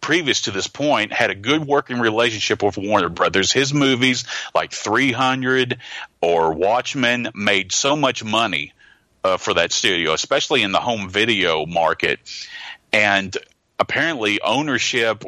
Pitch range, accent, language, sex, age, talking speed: 100-125 Hz, American, English, male, 40-59, 140 wpm